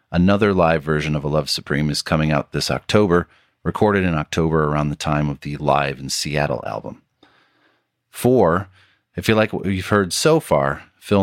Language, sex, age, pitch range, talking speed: English, male, 40-59, 80-105 Hz, 185 wpm